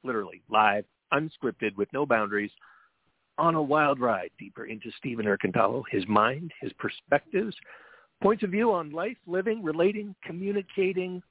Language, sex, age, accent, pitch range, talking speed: English, male, 50-69, American, 115-170 Hz, 140 wpm